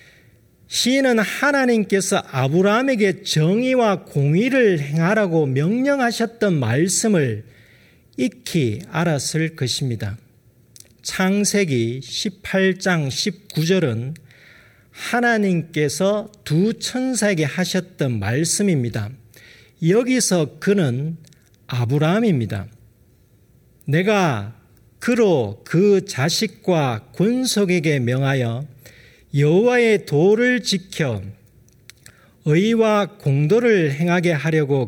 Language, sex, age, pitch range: Korean, male, 40-59, 125-200 Hz